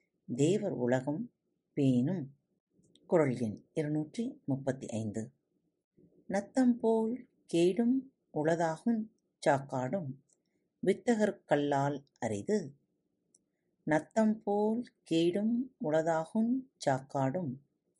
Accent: native